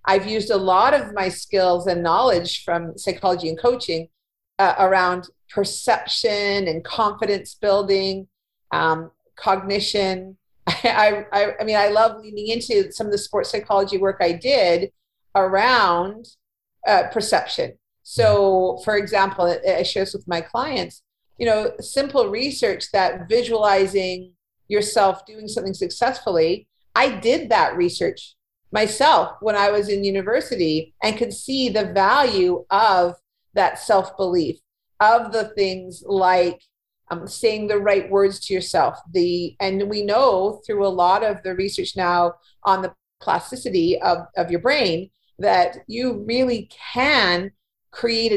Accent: American